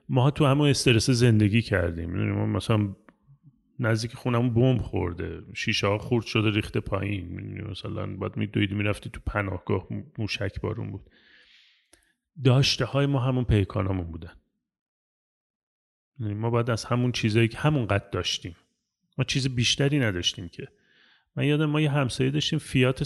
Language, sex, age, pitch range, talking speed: Persian, male, 30-49, 105-130 Hz, 145 wpm